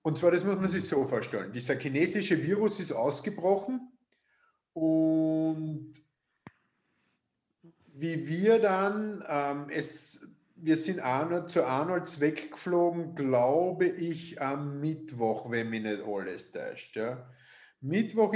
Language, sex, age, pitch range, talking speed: English, male, 50-69, 140-180 Hz, 120 wpm